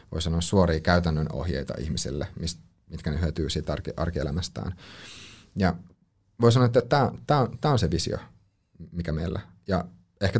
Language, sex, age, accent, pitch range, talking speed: Finnish, male, 30-49, native, 80-95 Hz, 135 wpm